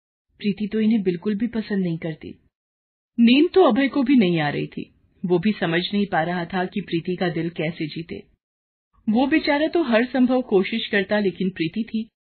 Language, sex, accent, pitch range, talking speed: Hindi, female, native, 165-245 Hz, 195 wpm